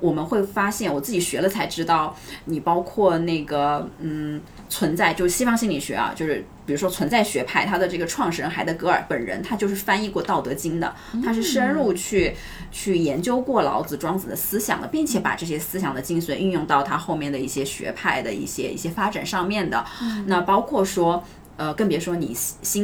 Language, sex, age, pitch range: Chinese, female, 20-39, 165-200 Hz